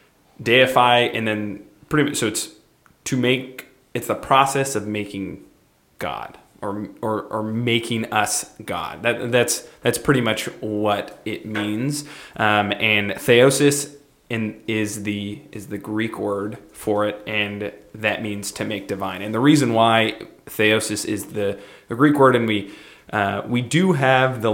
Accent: American